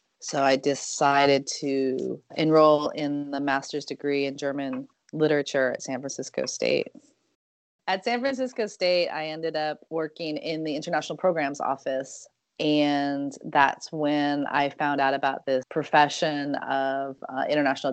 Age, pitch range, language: 30-49, 145-165 Hz, English